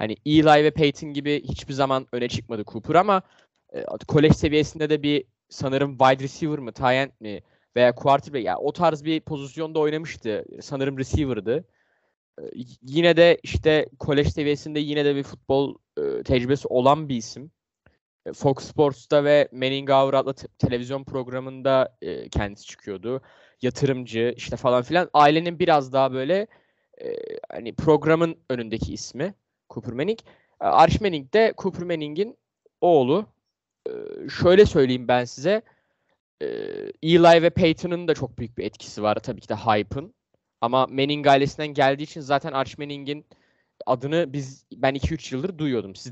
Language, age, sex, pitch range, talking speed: Turkish, 10-29, male, 130-160 Hz, 140 wpm